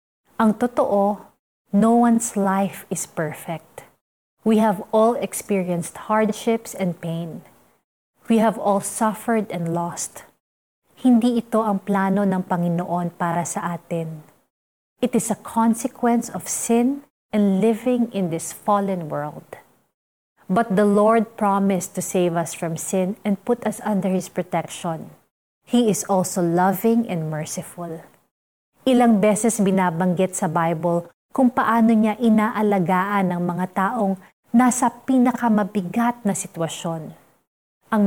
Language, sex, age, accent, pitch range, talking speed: Filipino, female, 30-49, native, 175-225 Hz, 125 wpm